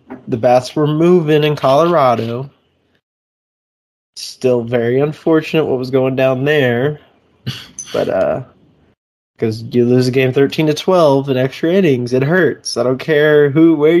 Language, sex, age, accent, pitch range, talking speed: English, male, 20-39, American, 120-150 Hz, 145 wpm